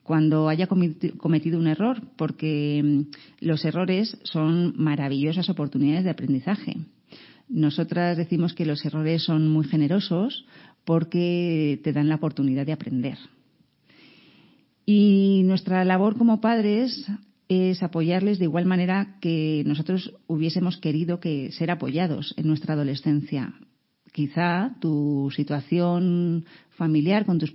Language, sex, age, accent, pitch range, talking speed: Spanish, female, 40-59, Spanish, 150-185 Hz, 115 wpm